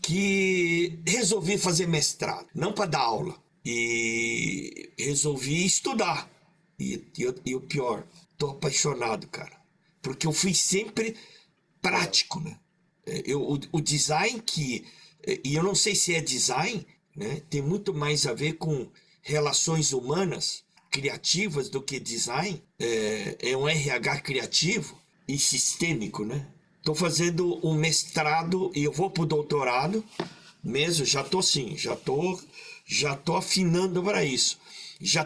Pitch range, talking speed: 150-190 Hz, 140 wpm